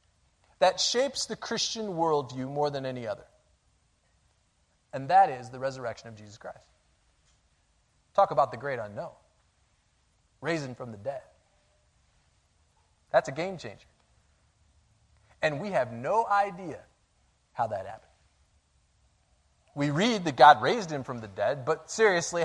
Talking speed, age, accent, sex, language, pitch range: 130 wpm, 30-49, American, male, English, 130-200 Hz